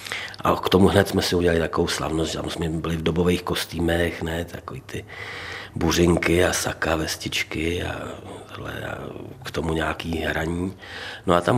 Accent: native